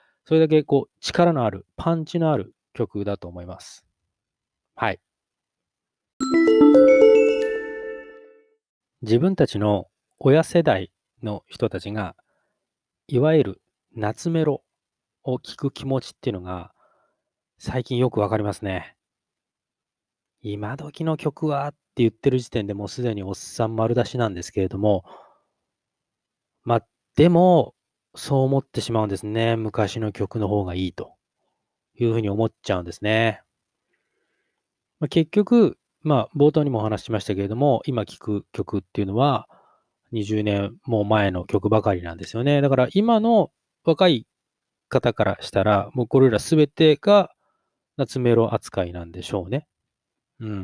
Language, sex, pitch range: Japanese, male, 105-150 Hz